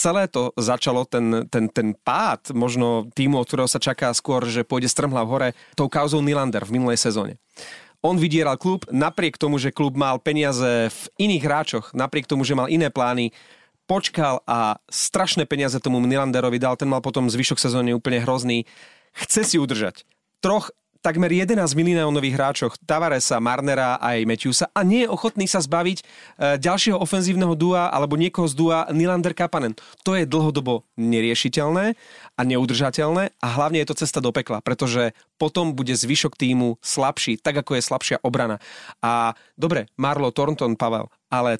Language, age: Slovak, 30-49